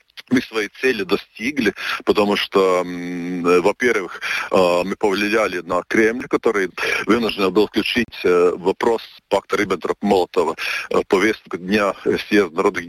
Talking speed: 105 wpm